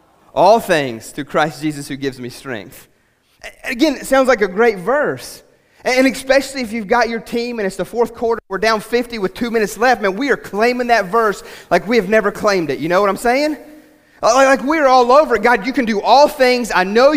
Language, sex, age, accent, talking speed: English, male, 30-49, American, 225 wpm